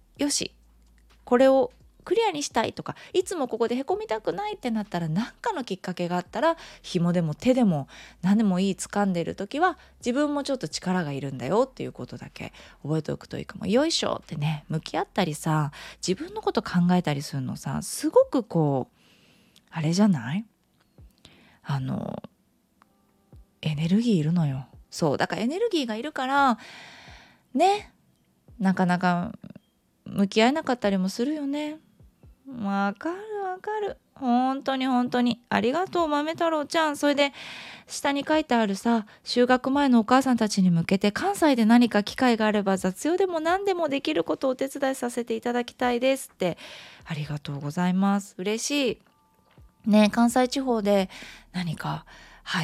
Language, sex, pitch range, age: Japanese, female, 175-270 Hz, 20-39